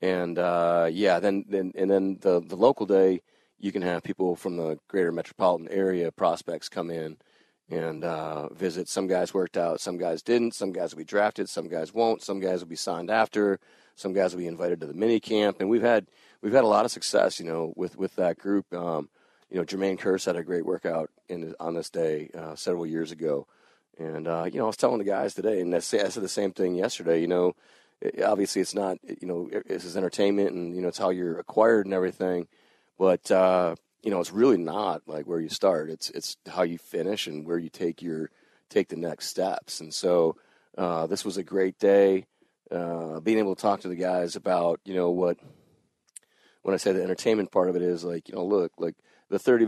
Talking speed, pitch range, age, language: 225 wpm, 85-100 Hz, 40-59, English